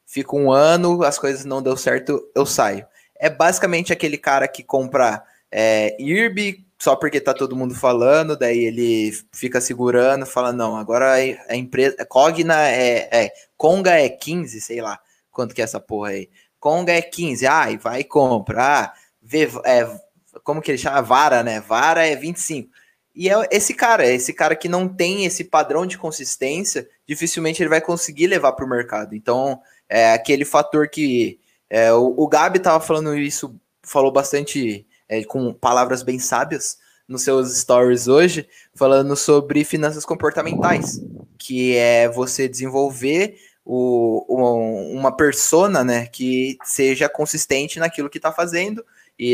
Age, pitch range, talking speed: 20-39, 125-160 Hz, 165 wpm